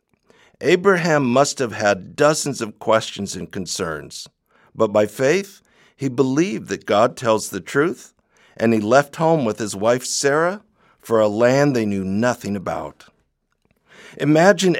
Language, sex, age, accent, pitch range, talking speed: English, male, 60-79, American, 110-155 Hz, 140 wpm